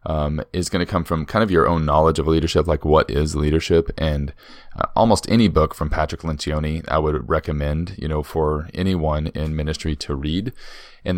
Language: English